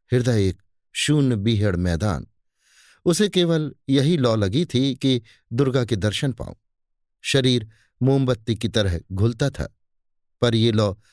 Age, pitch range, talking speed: 50-69, 105-145 Hz, 135 wpm